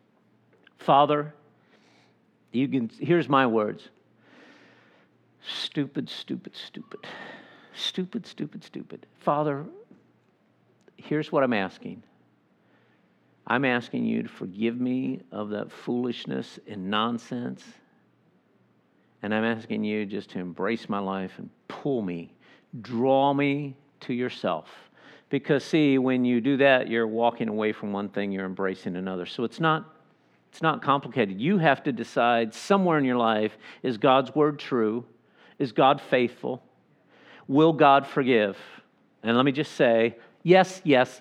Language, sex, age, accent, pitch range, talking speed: English, male, 50-69, American, 110-140 Hz, 130 wpm